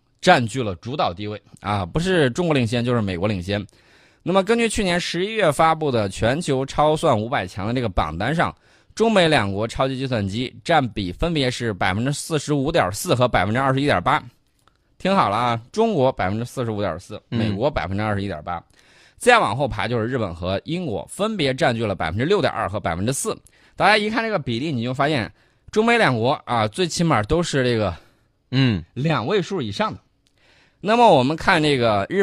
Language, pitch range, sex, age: Chinese, 105-155 Hz, male, 20-39